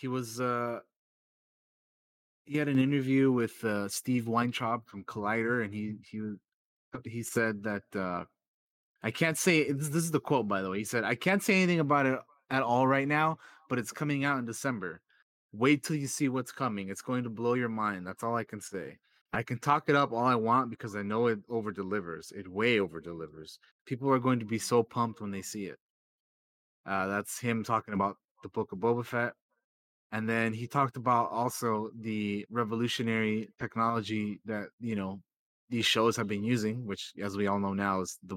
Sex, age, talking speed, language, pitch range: male, 30-49, 200 wpm, English, 105-125 Hz